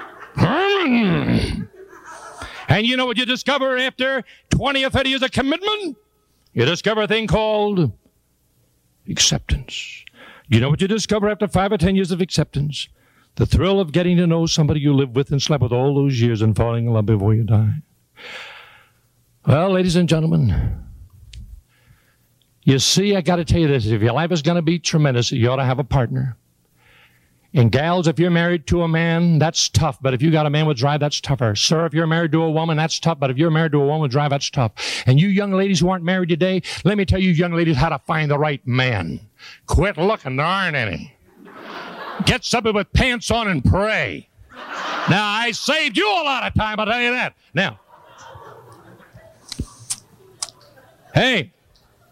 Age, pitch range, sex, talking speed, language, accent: 60-79, 135-195 Hz, male, 190 wpm, English, American